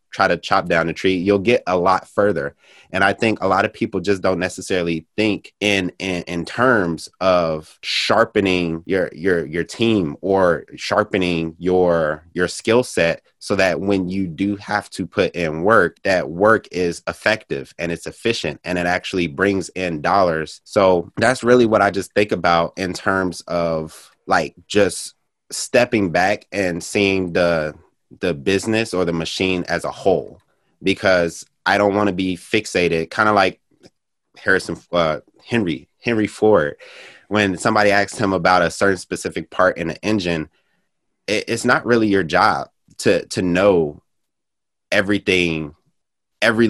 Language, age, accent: English, 20-39, American